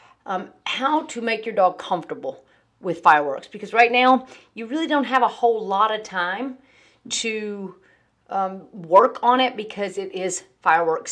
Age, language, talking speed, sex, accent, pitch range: 40-59, English, 160 wpm, female, American, 180-235 Hz